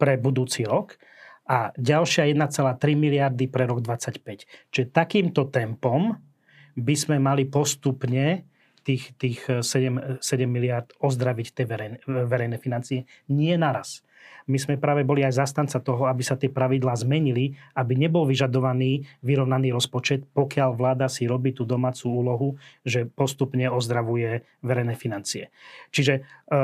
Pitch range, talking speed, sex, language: 130-150 Hz, 130 wpm, male, Slovak